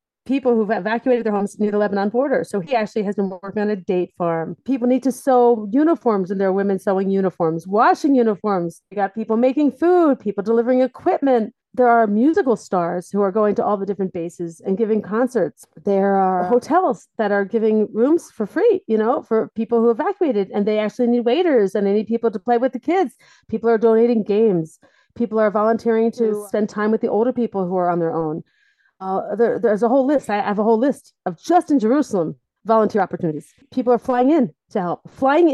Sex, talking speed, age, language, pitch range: female, 215 wpm, 40-59, English, 200-260 Hz